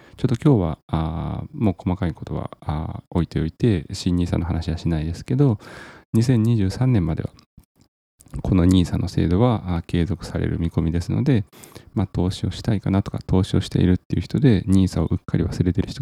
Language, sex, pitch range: Japanese, male, 85-115 Hz